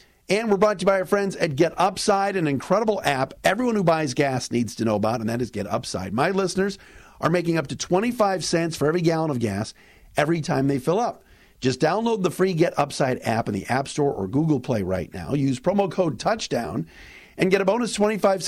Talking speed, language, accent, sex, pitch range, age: 210 wpm, English, American, male, 135-195 Hz, 50-69